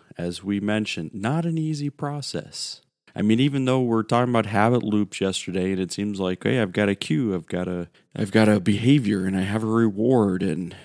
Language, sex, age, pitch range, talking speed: English, male, 40-59, 95-115 Hz, 215 wpm